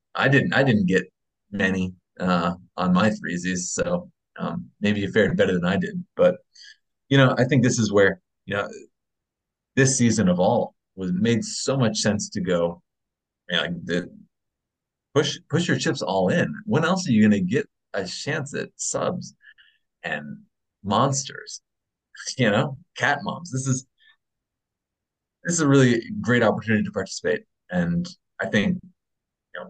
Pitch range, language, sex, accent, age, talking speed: 105-165 Hz, English, male, American, 30-49, 160 wpm